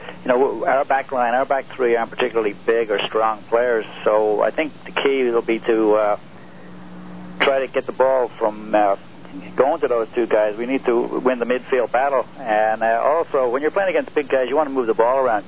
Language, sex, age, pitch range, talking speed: English, male, 50-69, 105-135 Hz, 225 wpm